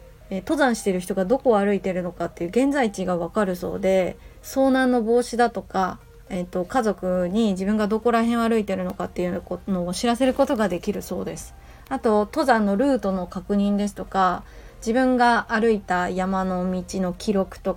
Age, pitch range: 20-39, 185-230 Hz